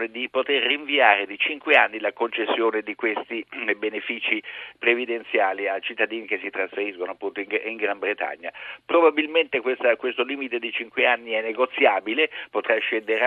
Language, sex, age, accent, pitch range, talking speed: Italian, male, 50-69, native, 115-170 Hz, 150 wpm